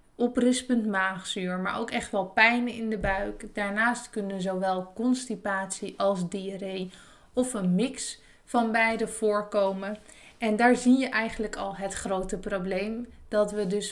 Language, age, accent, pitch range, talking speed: Dutch, 20-39, Dutch, 195-230 Hz, 145 wpm